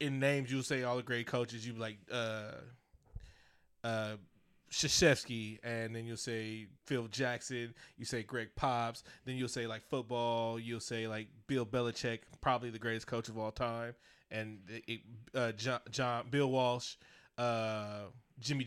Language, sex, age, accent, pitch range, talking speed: English, male, 20-39, American, 115-135 Hz, 160 wpm